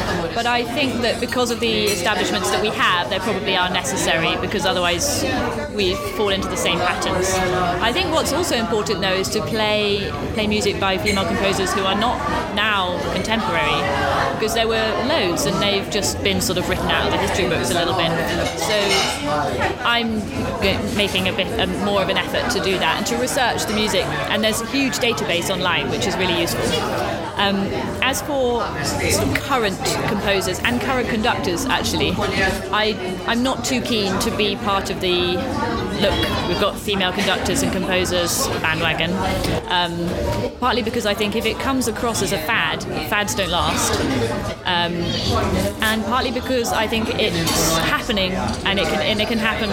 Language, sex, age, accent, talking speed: English, female, 20-39, British, 170 wpm